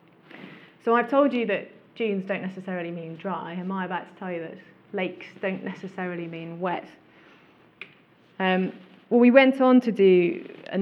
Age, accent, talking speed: 30-49, British, 165 wpm